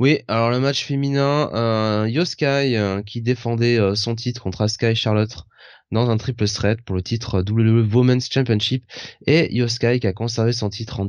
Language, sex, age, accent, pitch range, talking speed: French, male, 20-39, French, 105-125 Hz, 195 wpm